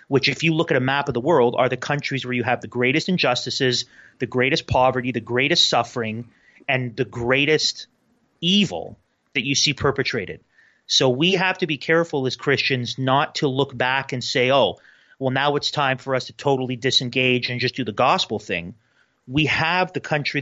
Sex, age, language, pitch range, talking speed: male, 30-49, English, 125-145 Hz, 195 wpm